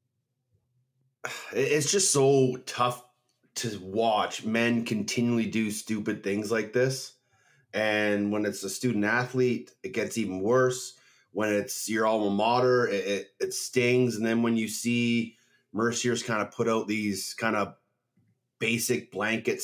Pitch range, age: 105-125 Hz, 30-49